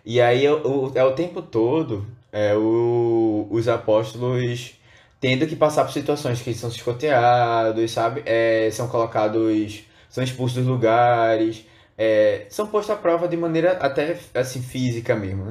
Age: 20-39